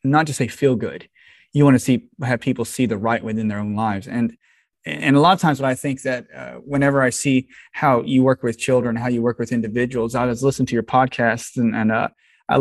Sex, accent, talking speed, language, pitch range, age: male, American, 250 wpm, English, 120-140 Hz, 20-39